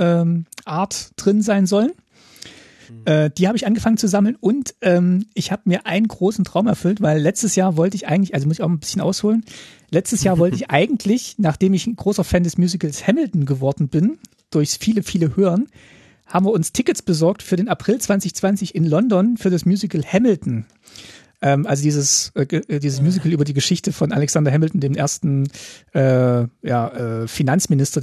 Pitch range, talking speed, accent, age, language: 155-205 Hz, 175 wpm, German, 40-59, German